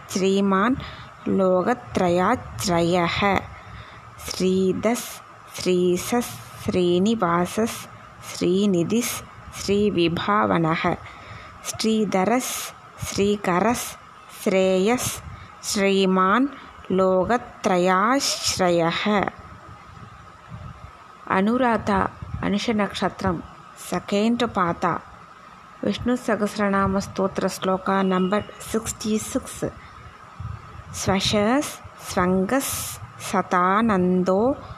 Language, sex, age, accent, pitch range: Tamil, female, 20-39, native, 180-225 Hz